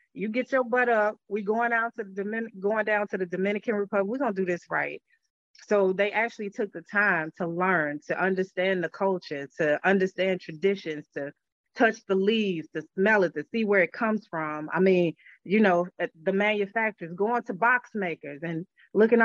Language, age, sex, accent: English, 30-49, female, American